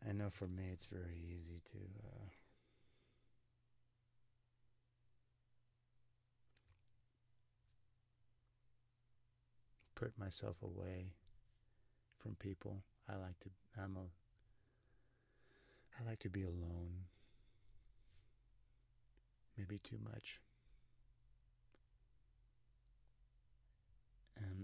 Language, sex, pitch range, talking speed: English, male, 90-115 Hz, 70 wpm